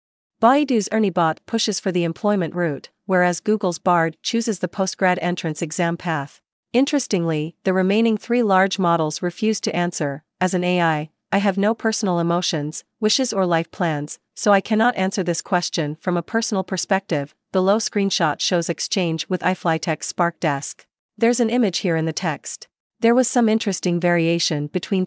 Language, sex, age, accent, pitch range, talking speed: English, female, 40-59, American, 165-205 Hz, 165 wpm